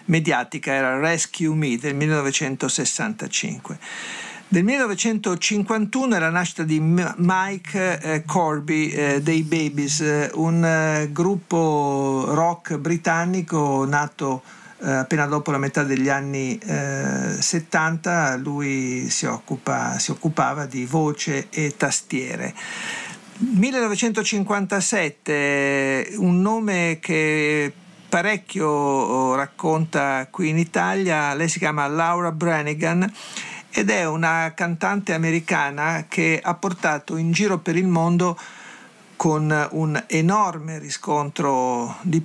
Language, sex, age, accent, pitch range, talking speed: Italian, male, 50-69, native, 150-180 Hz, 105 wpm